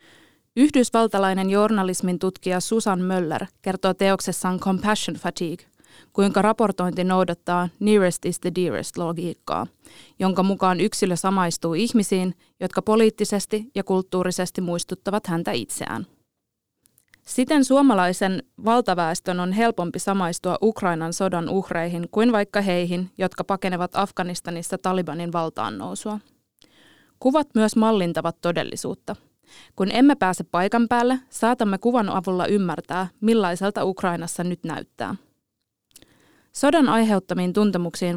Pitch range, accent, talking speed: 180-215 Hz, native, 105 wpm